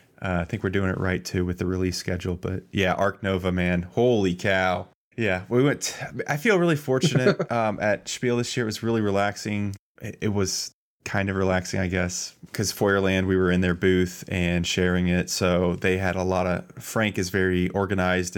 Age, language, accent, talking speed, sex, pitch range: 20-39, English, American, 200 wpm, male, 90-105 Hz